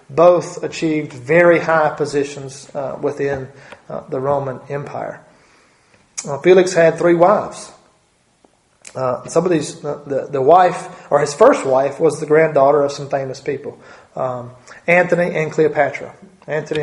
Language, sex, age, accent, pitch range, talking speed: English, male, 30-49, American, 140-165 Hz, 140 wpm